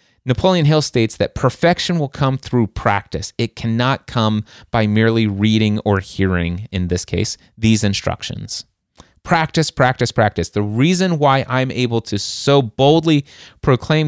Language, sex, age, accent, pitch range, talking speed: English, male, 30-49, American, 100-130 Hz, 145 wpm